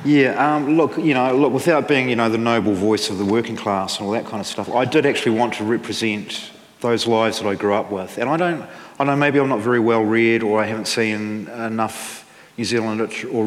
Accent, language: Australian, English